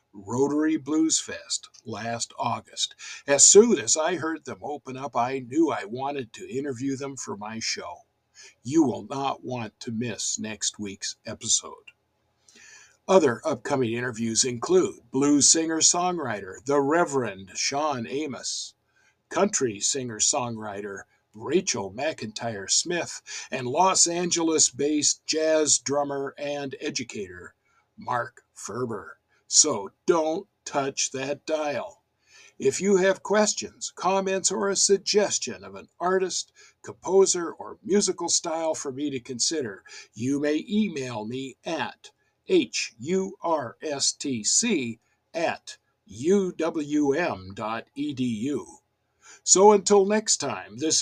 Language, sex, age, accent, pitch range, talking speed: English, male, 60-79, American, 125-185 Hz, 115 wpm